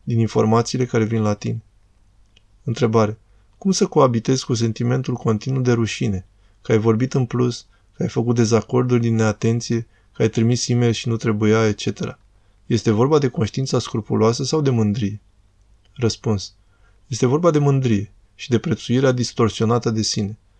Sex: male